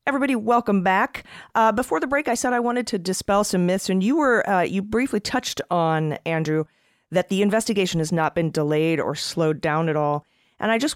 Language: English